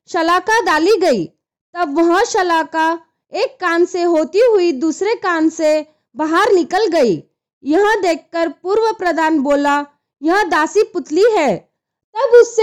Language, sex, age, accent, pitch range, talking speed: Hindi, female, 20-39, native, 335-415 Hz, 95 wpm